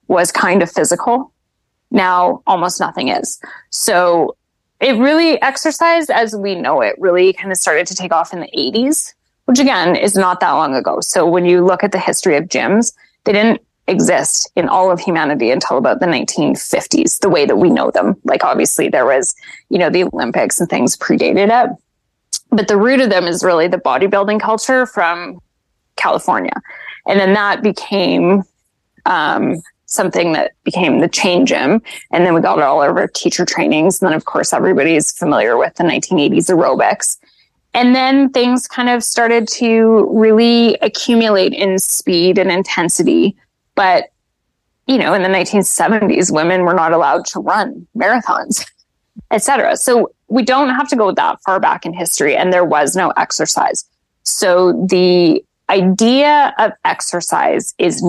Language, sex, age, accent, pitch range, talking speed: English, female, 10-29, American, 180-245 Hz, 165 wpm